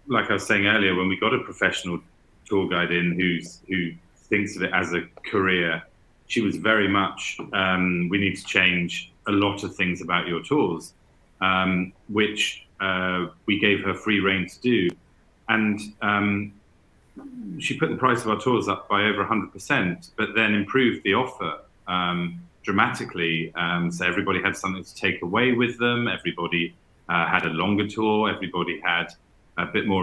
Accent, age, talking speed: British, 30-49, 175 wpm